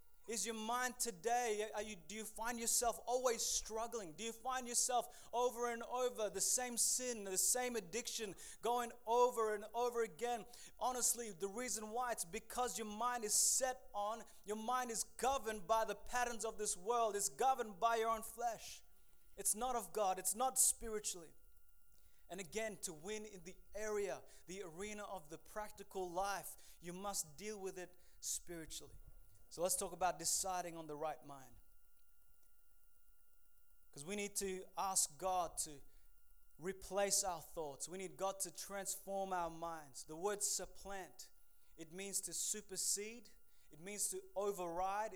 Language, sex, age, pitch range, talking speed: English, male, 20-39, 185-230 Hz, 160 wpm